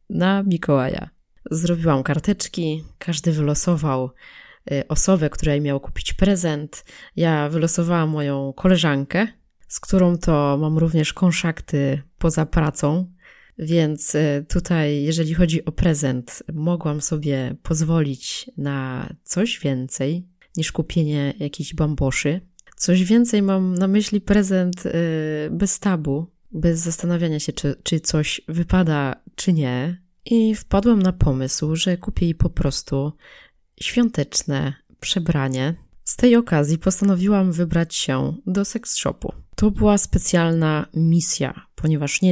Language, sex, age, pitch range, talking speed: Polish, female, 20-39, 145-180 Hz, 115 wpm